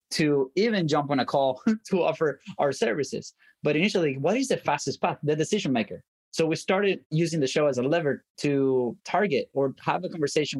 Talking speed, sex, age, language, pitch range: 200 wpm, male, 20-39, English, 130-160 Hz